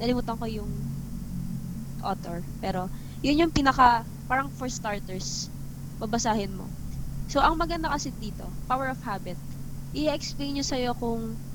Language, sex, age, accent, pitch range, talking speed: Filipino, female, 20-39, native, 170-255 Hz, 130 wpm